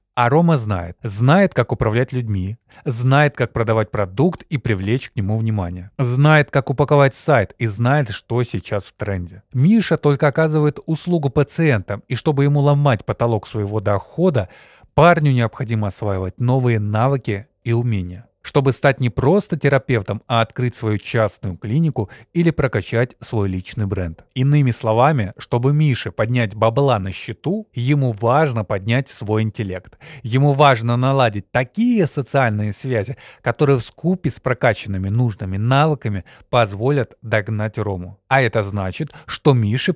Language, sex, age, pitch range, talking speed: Russian, male, 20-39, 110-140 Hz, 140 wpm